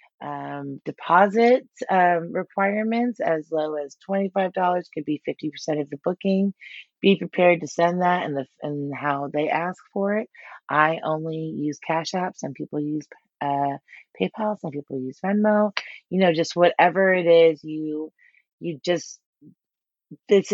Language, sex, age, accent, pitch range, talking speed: English, female, 30-49, American, 150-185 Hz, 150 wpm